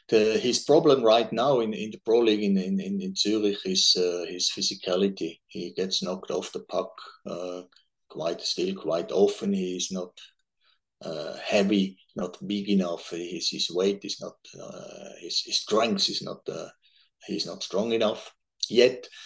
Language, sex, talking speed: English, male, 170 wpm